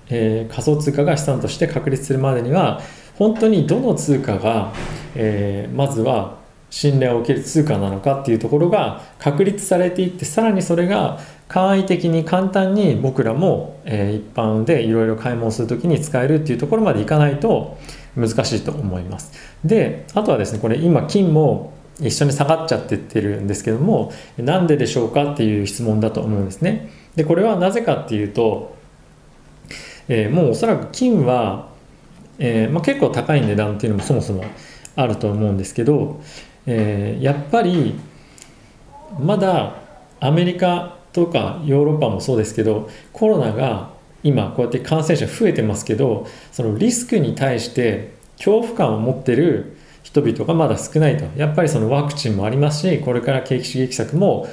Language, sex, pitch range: Japanese, male, 110-165 Hz